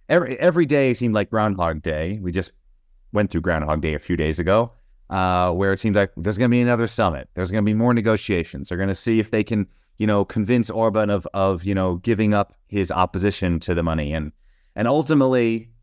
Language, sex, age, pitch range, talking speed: English, male, 30-49, 90-110 Hz, 225 wpm